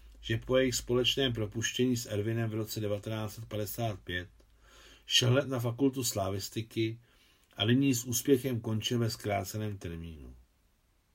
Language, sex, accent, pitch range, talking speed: Czech, male, native, 90-130 Hz, 125 wpm